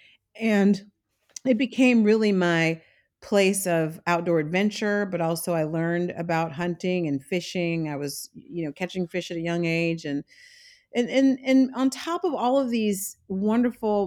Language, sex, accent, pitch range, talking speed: English, female, American, 165-200 Hz, 160 wpm